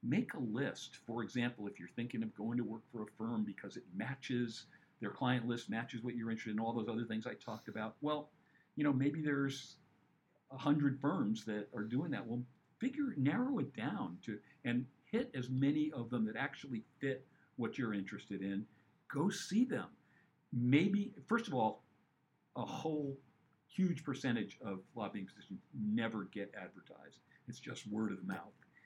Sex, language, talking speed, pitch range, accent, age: male, English, 180 wpm, 110-150 Hz, American, 50-69